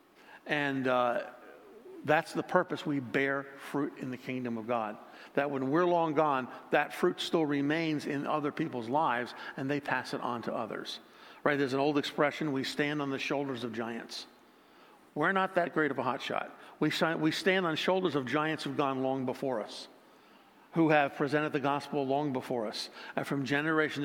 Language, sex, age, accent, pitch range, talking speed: English, male, 50-69, American, 135-165 Hz, 185 wpm